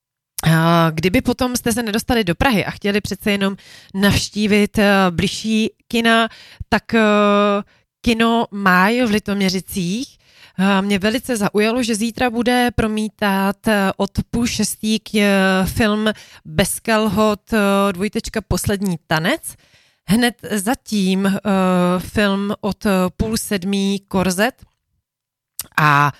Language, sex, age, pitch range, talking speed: Czech, female, 30-49, 185-225 Hz, 100 wpm